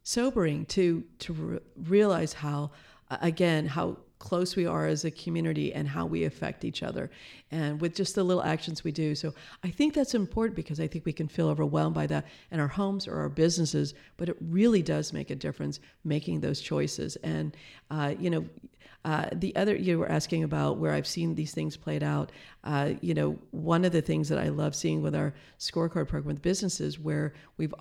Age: 50-69